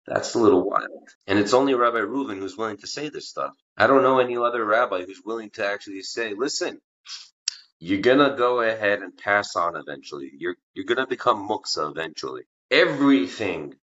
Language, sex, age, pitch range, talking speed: English, male, 30-49, 100-145 Hz, 180 wpm